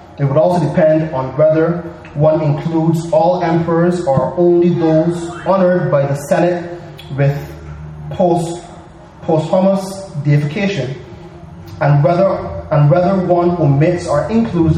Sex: male